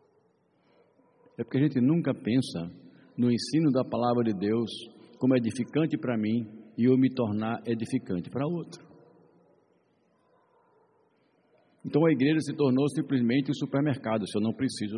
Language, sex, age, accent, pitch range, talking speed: Portuguese, male, 60-79, Brazilian, 105-140 Hz, 140 wpm